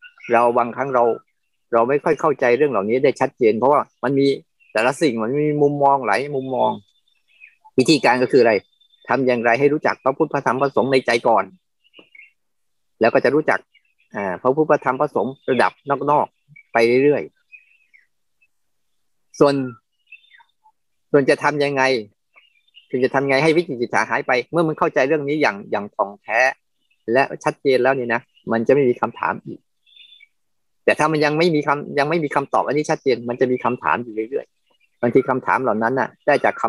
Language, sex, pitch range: Thai, male, 125-160 Hz